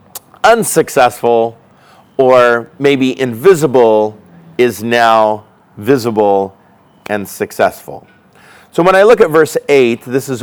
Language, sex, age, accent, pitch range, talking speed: English, male, 40-59, American, 115-145 Hz, 105 wpm